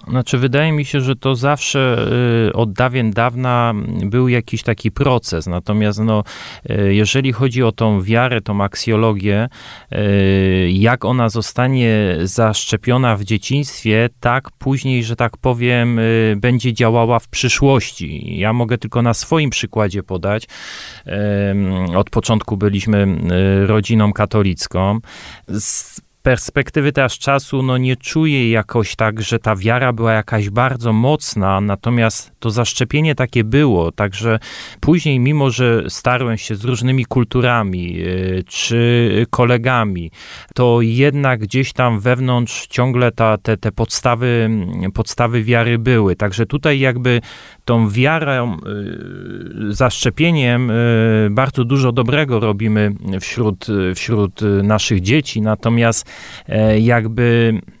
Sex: male